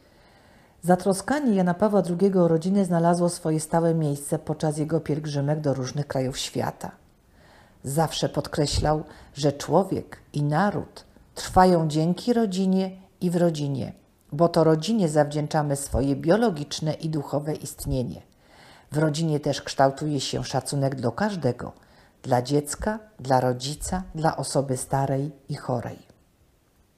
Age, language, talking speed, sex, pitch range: 50-69, Polish, 120 wpm, female, 140-175 Hz